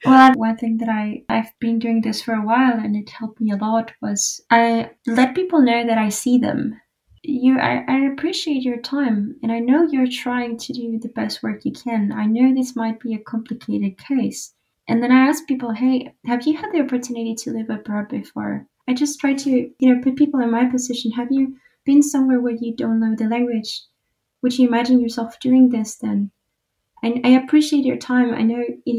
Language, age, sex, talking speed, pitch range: English, 20-39, female, 215 wpm, 205-255 Hz